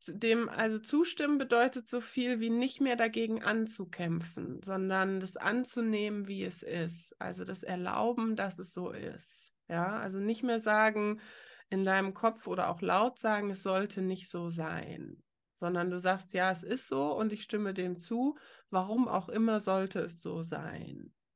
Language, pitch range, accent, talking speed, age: German, 185-230 Hz, German, 170 wpm, 20-39